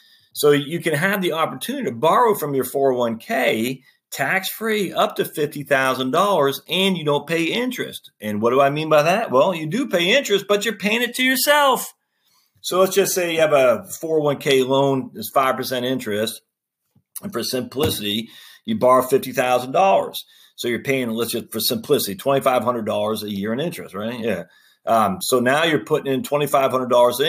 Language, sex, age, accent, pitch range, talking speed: English, male, 40-59, American, 120-180 Hz, 200 wpm